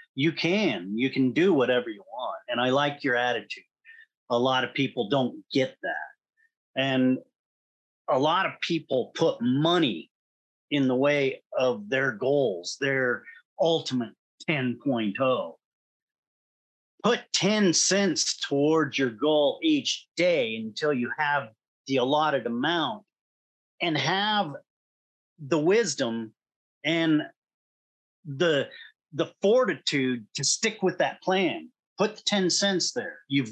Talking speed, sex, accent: 125 wpm, male, American